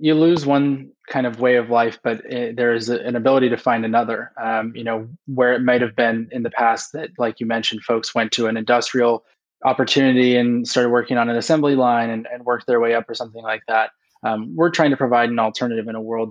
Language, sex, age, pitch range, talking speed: English, male, 20-39, 115-130 Hz, 235 wpm